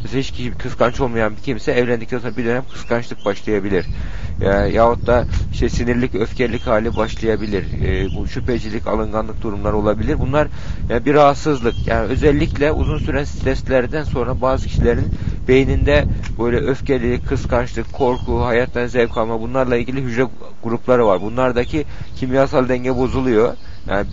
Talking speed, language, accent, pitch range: 140 wpm, Turkish, native, 105-130 Hz